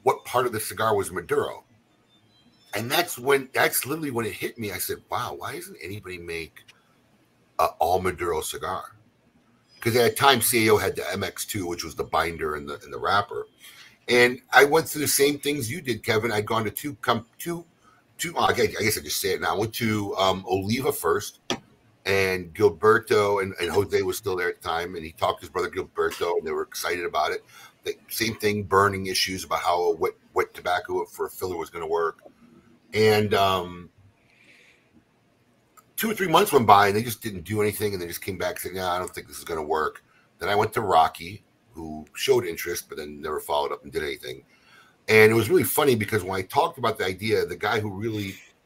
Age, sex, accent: 50-69, male, American